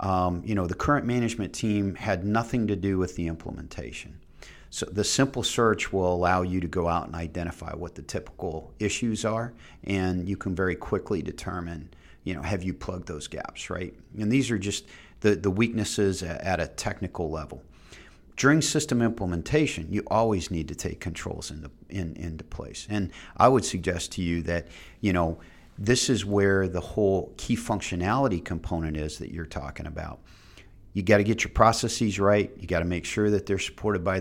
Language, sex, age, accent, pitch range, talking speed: English, male, 40-59, American, 85-100 Hz, 185 wpm